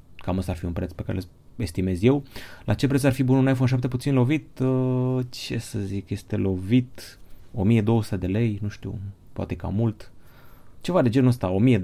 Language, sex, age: Romanian, male, 20-39